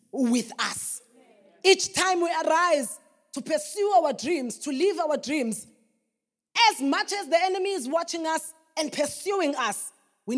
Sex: female